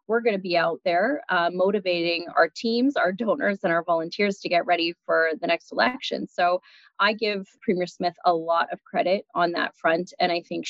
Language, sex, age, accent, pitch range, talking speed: English, female, 20-39, American, 175-220 Hz, 210 wpm